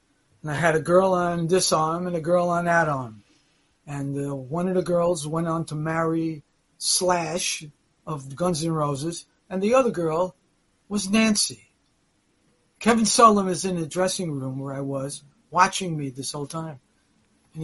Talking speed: 175 wpm